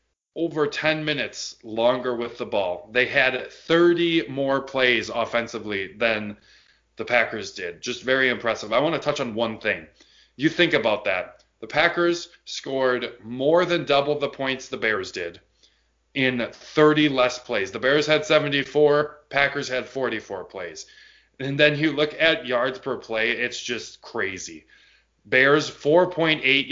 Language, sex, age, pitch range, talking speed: English, male, 20-39, 115-150 Hz, 150 wpm